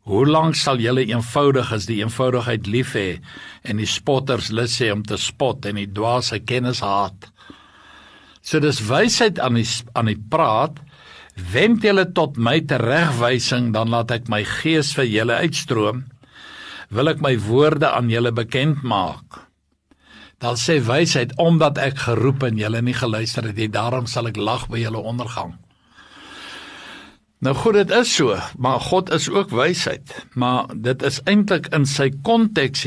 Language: English